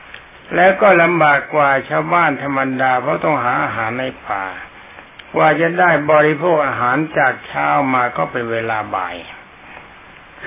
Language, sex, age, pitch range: Thai, male, 60-79, 130-165 Hz